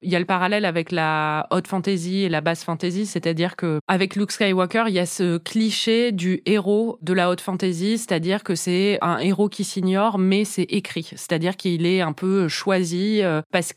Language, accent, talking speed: French, French, 200 wpm